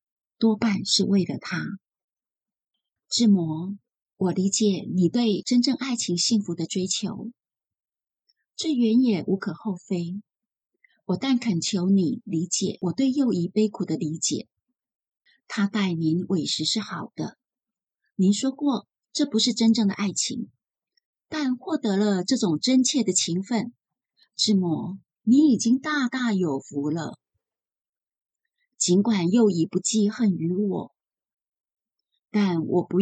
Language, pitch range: Chinese, 180-230 Hz